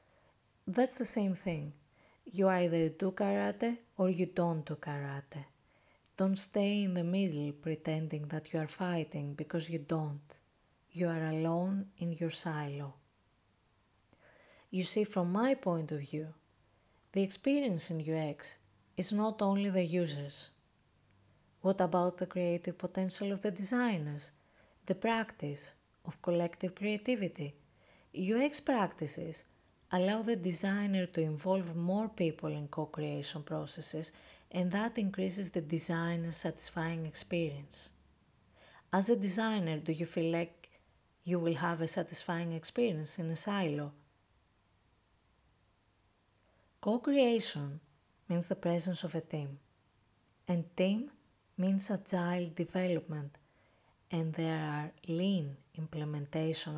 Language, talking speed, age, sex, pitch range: English, 120 wpm, 30-49, female, 145-185 Hz